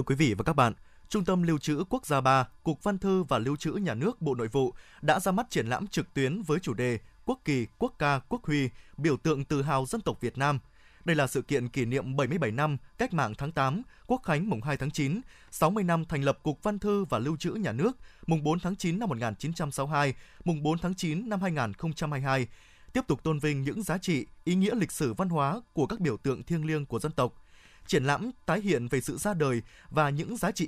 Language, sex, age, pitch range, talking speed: Vietnamese, male, 20-39, 135-180 Hz, 245 wpm